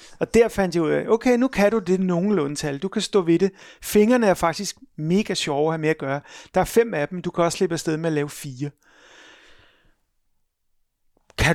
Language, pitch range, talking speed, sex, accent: Danish, 165-210 Hz, 225 wpm, male, native